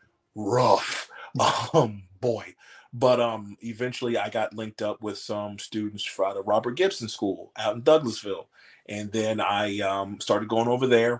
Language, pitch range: English, 95-115 Hz